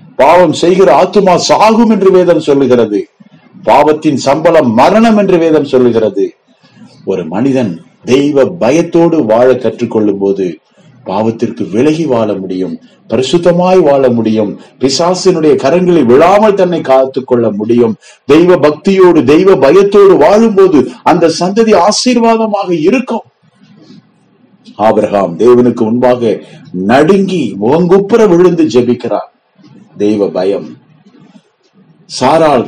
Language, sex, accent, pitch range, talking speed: Tamil, male, native, 125-210 Hz, 95 wpm